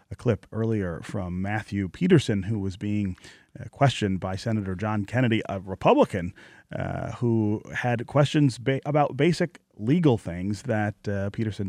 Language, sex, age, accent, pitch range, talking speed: English, male, 30-49, American, 100-125 Hz, 140 wpm